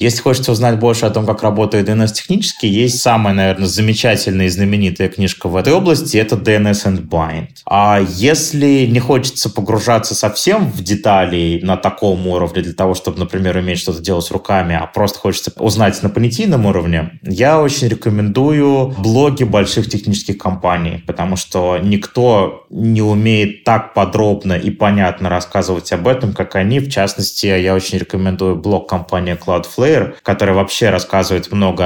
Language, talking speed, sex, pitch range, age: Russian, 155 wpm, male, 90-110 Hz, 20-39